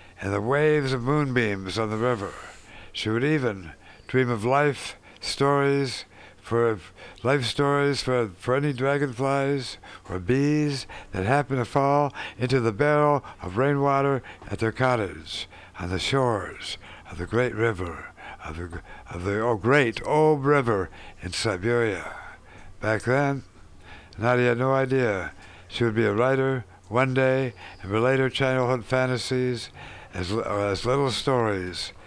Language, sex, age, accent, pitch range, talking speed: English, male, 60-79, American, 100-140 Hz, 140 wpm